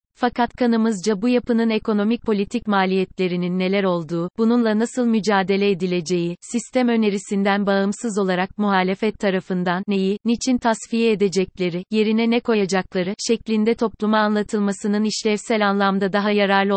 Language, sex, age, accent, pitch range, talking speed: Turkish, female, 30-49, native, 190-220 Hz, 120 wpm